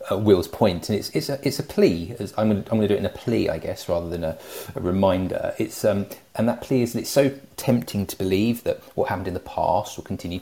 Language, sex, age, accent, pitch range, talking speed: English, male, 30-49, British, 95-120 Hz, 270 wpm